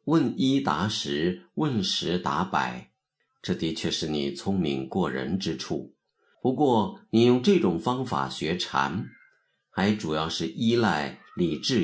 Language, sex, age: Chinese, male, 50-69